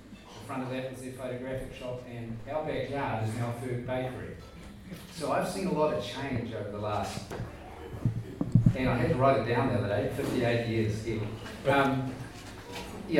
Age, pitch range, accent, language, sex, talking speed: 30-49, 115-135 Hz, Australian, English, male, 175 wpm